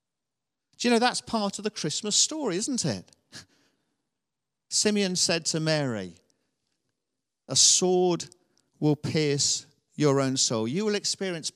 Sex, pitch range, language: male, 130-175 Hz, English